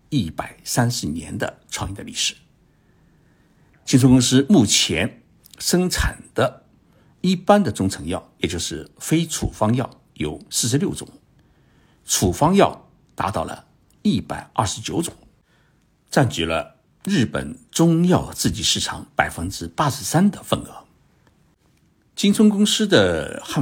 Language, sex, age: Chinese, male, 60-79